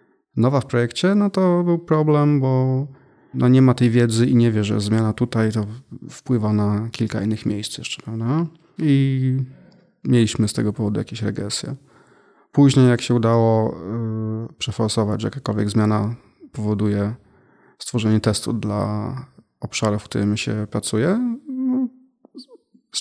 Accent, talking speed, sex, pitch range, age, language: native, 140 wpm, male, 105-130 Hz, 20-39, Polish